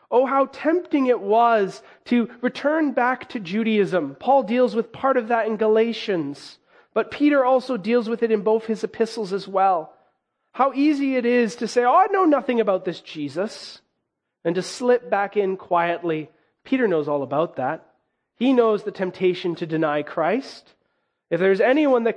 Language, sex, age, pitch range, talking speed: English, male, 30-49, 175-235 Hz, 175 wpm